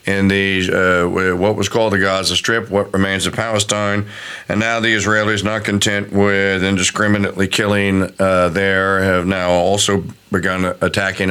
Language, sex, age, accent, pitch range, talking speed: English, male, 50-69, American, 100-135 Hz, 150 wpm